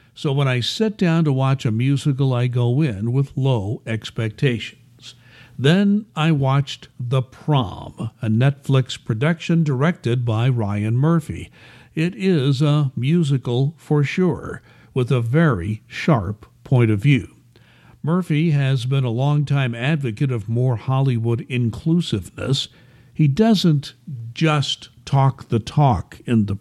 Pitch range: 120-150 Hz